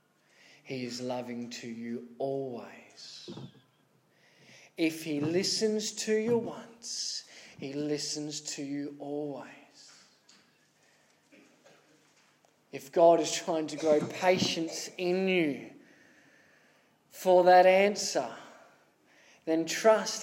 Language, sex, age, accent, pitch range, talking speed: English, male, 20-39, Australian, 165-235 Hz, 90 wpm